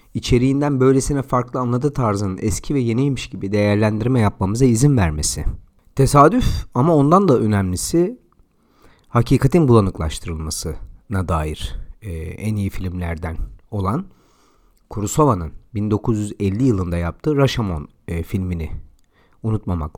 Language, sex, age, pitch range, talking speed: Turkish, male, 40-59, 95-135 Hz, 100 wpm